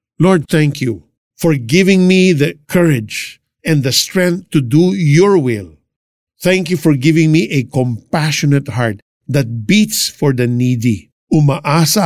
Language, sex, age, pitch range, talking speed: Filipino, male, 50-69, 125-160 Hz, 145 wpm